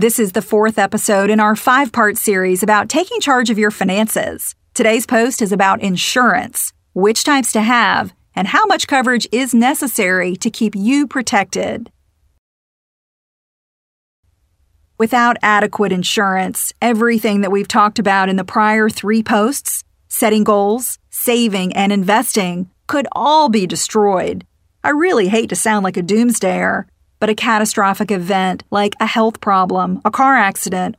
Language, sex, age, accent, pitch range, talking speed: English, female, 40-59, American, 195-235 Hz, 145 wpm